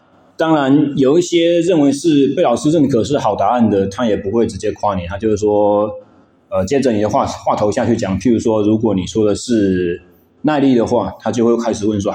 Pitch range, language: 100-140 Hz, Chinese